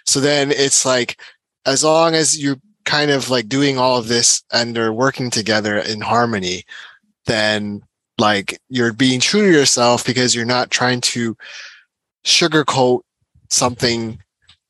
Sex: male